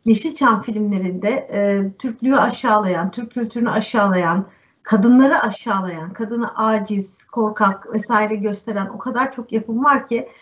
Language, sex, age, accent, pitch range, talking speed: Turkish, female, 50-69, native, 195-235 Hz, 120 wpm